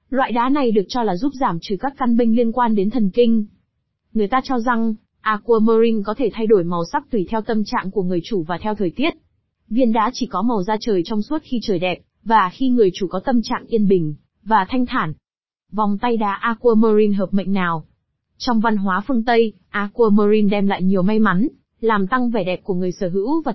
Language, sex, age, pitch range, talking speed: Vietnamese, female, 20-39, 195-240 Hz, 230 wpm